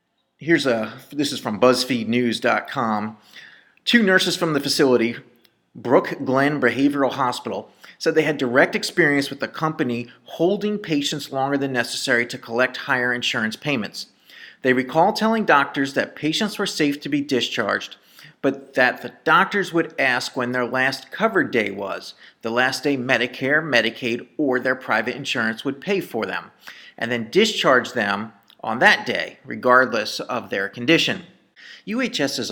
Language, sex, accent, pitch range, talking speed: English, male, American, 120-160 Hz, 150 wpm